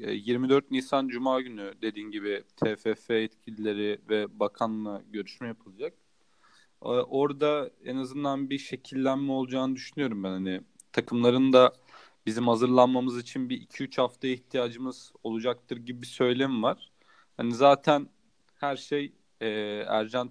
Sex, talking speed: male, 120 wpm